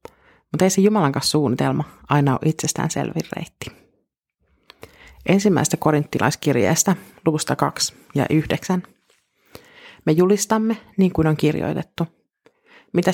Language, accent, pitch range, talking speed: Finnish, native, 150-180 Hz, 105 wpm